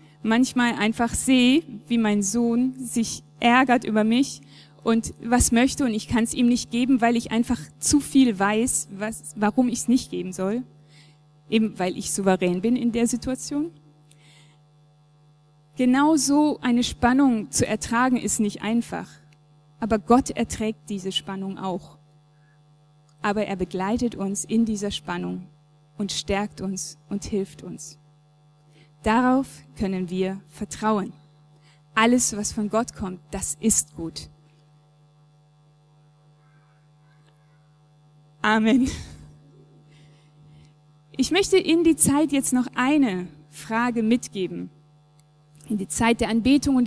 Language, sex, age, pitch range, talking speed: German, female, 20-39, 150-240 Hz, 125 wpm